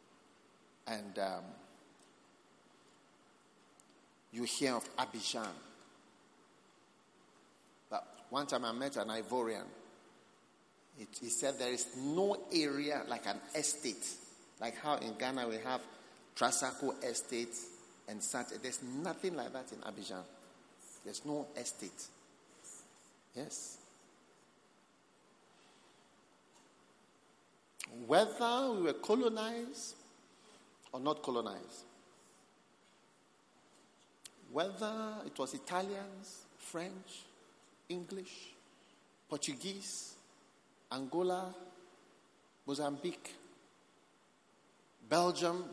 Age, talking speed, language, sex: 50-69, 80 wpm, English, male